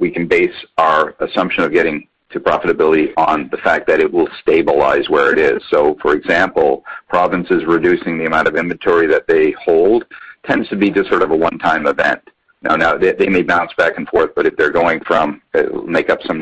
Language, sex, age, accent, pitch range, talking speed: English, male, 50-69, American, 345-435 Hz, 210 wpm